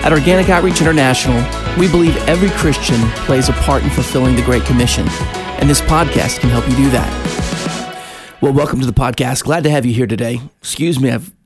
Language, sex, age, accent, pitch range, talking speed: English, male, 40-59, American, 115-135 Hz, 200 wpm